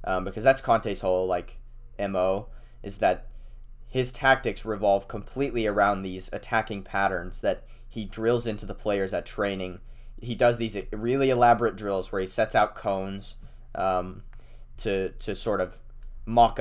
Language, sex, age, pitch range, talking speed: English, male, 20-39, 95-120 Hz, 150 wpm